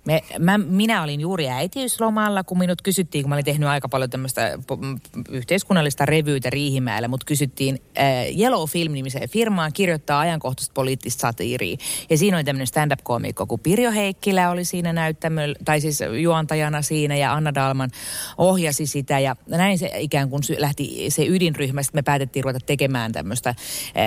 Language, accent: Finnish, native